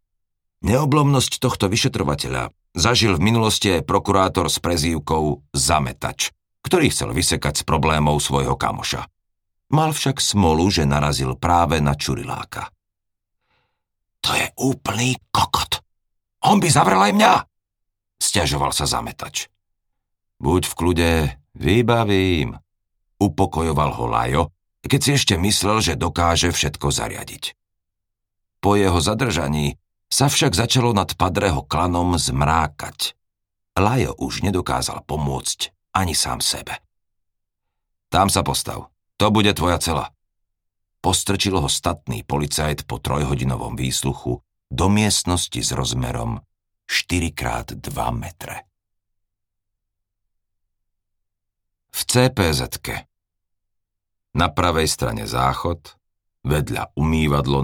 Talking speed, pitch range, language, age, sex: 105 wpm, 80-100 Hz, Slovak, 50-69, male